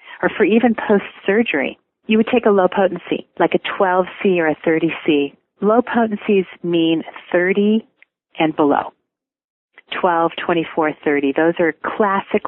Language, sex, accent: English, female, American